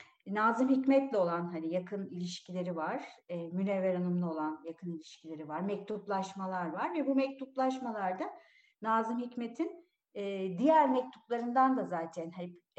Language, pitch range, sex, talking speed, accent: Turkish, 185-245 Hz, female, 115 wpm, native